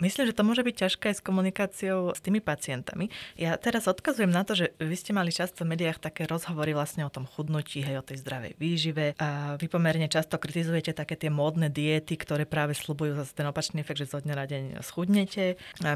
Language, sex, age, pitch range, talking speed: Slovak, female, 20-39, 155-190 Hz, 220 wpm